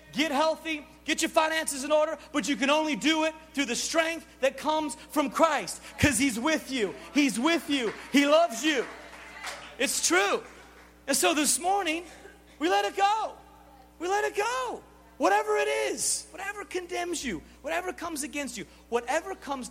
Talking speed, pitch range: 170 wpm, 180-285 Hz